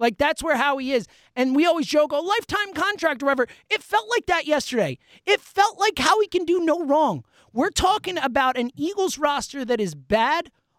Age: 30-49